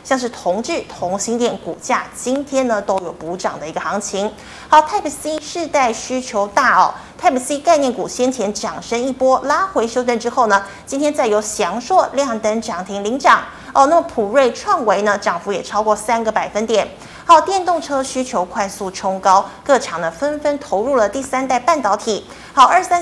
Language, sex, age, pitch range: Chinese, female, 30-49, 200-270 Hz